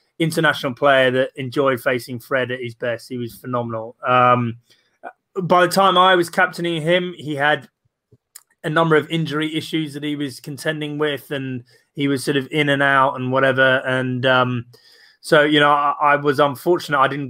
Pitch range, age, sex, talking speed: 130-170 Hz, 20-39, male, 185 wpm